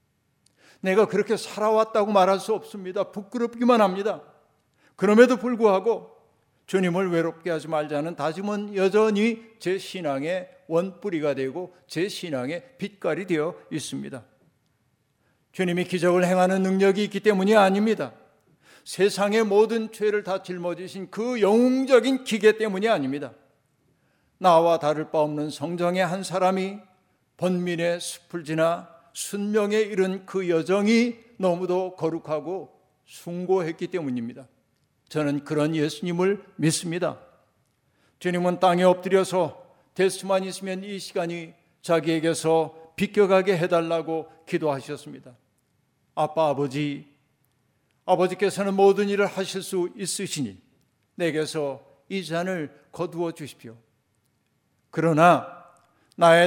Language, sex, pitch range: Korean, male, 155-195 Hz